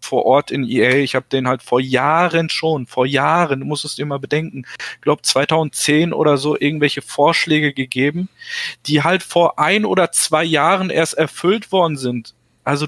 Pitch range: 120-150 Hz